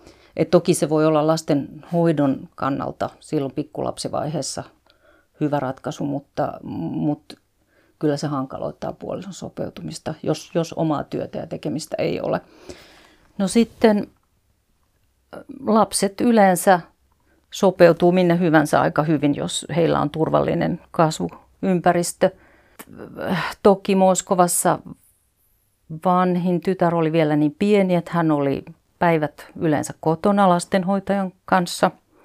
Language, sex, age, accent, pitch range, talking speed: Finnish, female, 40-59, native, 150-180 Hz, 105 wpm